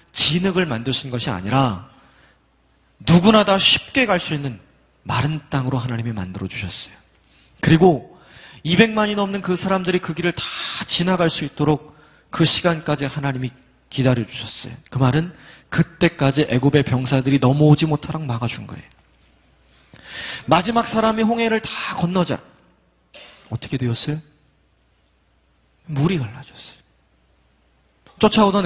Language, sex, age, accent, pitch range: Korean, male, 30-49, native, 125-180 Hz